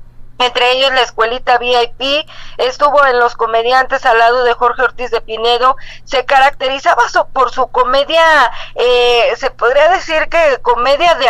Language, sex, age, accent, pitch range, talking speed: Spanish, female, 40-59, Mexican, 235-265 Hz, 150 wpm